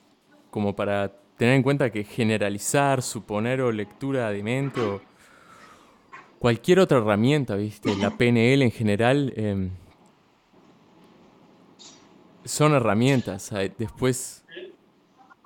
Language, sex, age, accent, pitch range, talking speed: English, male, 20-39, Argentinian, 105-130 Hz, 95 wpm